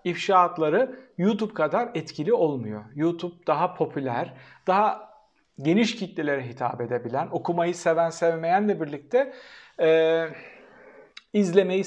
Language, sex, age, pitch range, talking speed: Turkish, male, 50-69, 155-210 Hz, 95 wpm